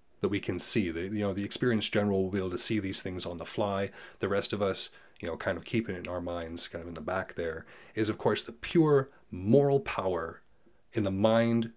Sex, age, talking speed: male, 30-49, 250 wpm